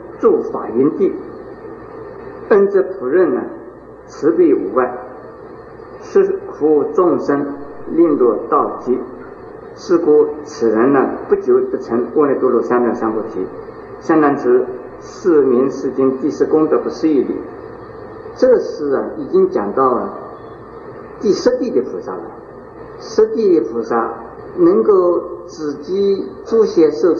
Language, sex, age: Chinese, male, 50-69